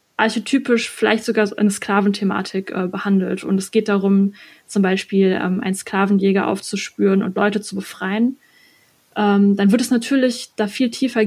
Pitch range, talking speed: 195-235 Hz, 155 wpm